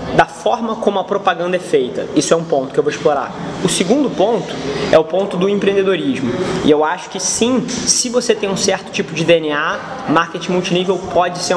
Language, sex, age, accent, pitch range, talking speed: Portuguese, male, 20-39, Brazilian, 170-210 Hz, 205 wpm